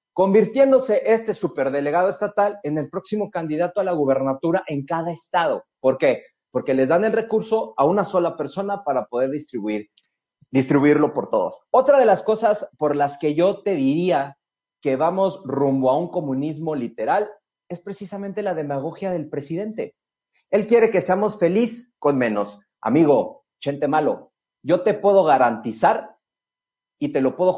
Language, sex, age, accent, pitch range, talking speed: Spanish, male, 40-59, Mexican, 150-210 Hz, 155 wpm